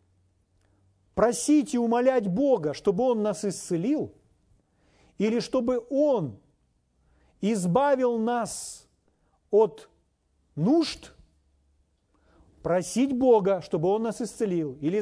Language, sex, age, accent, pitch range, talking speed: Russian, male, 40-59, native, 165-240 Hz, 90 wpm